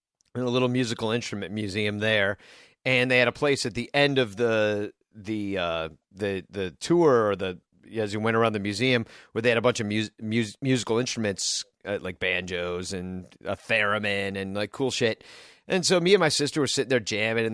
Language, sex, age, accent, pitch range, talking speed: English, male, 40-59, American, 105-130 Hz, 210 wpm